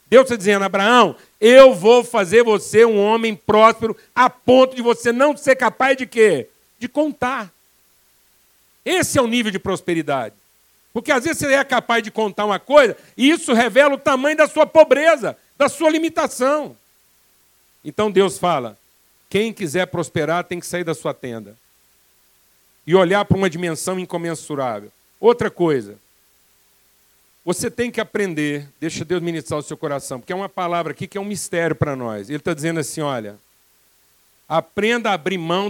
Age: 60-79